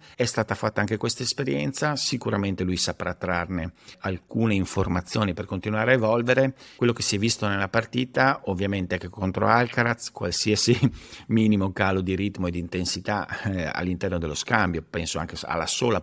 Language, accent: Italian, native